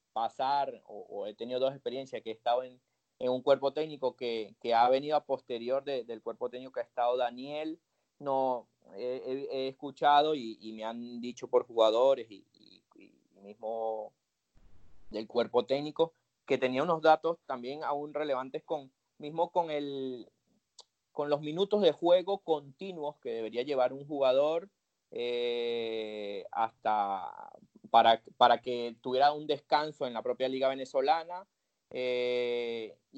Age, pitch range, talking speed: 30-49, 120-150 Hz, 150 wpm